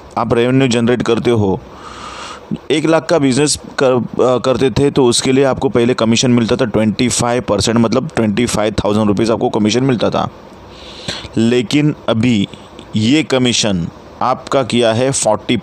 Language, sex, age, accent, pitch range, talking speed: Hindi, male, 30-49, native, 110-130 Hz, 155 wpm